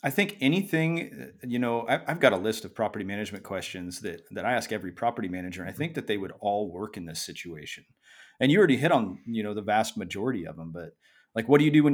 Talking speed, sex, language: 250 wpm, male, English